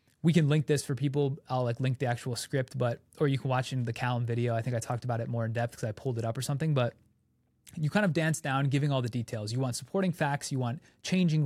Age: 20-39